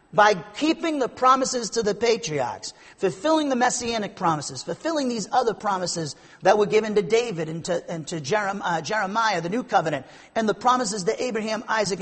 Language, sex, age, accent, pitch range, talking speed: English, male, 40-59, American, 175-225 Hz, 170 wpm